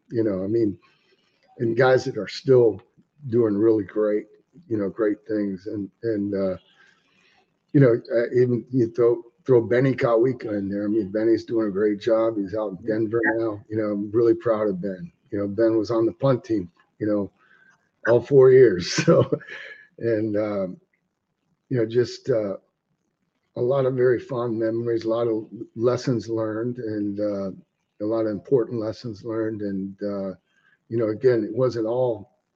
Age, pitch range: 40-59, 105-120 Hz